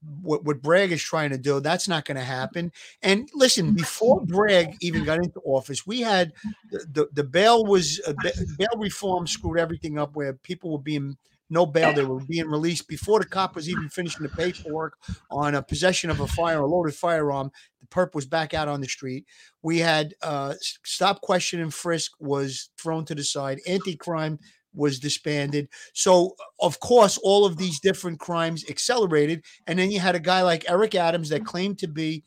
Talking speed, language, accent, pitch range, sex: 195 wpm, English, American, 150-190 Hz, male